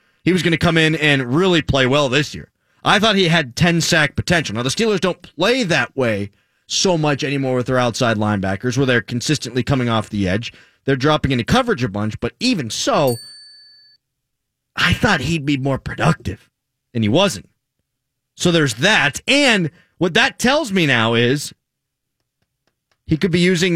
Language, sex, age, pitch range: English, male, 30-49, 130-190 Hz